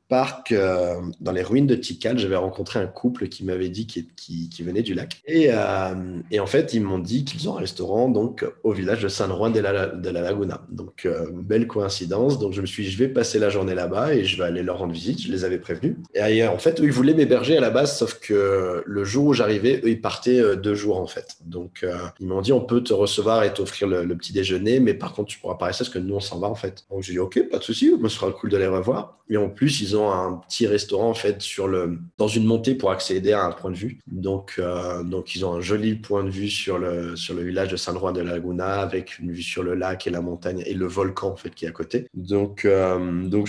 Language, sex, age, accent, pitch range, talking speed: French, male, 30-49, French, 90-110 Hz, 275 wpm